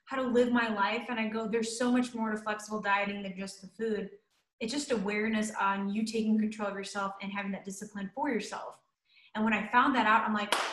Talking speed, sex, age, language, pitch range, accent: 230 wpm, female, 20-39, English, 210-245 Hz, American